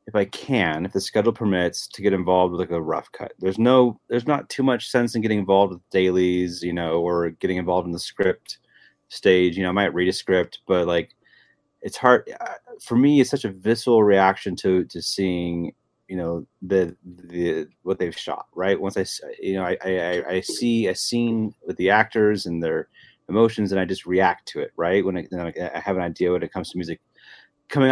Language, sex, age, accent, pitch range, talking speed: English, male, 30-49, American, 90-105 Hz, 215 wpm